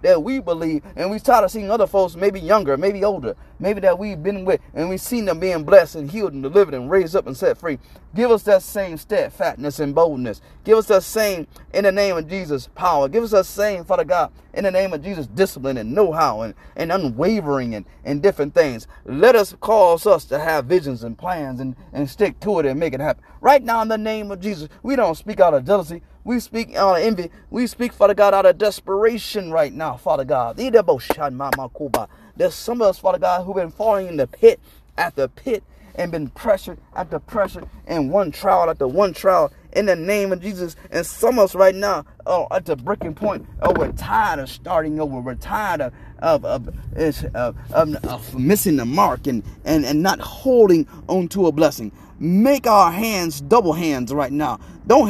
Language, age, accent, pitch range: English, 30-49, American, 160-220 Hz